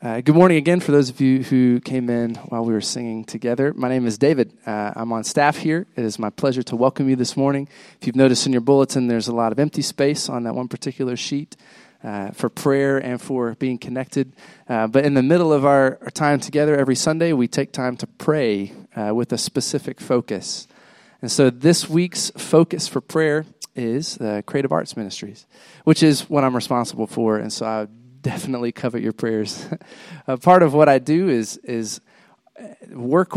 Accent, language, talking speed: American, English, 215 wpm